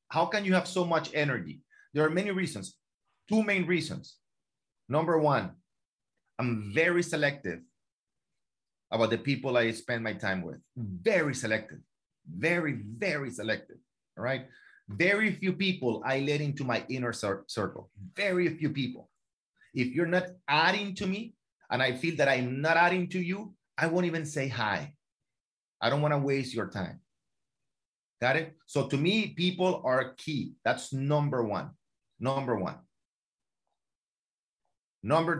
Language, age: English, 30-49